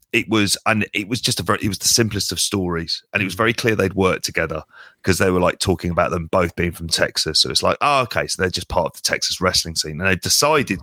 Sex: male